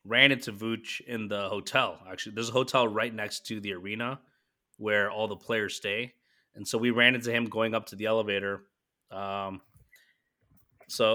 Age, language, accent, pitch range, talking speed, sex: 30-49, English, American, 110-140 Hz, 180 wpm, male